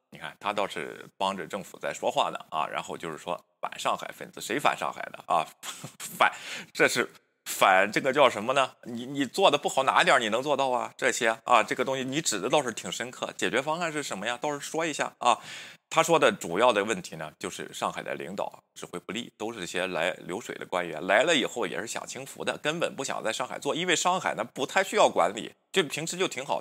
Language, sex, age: Chinese, male, 20-39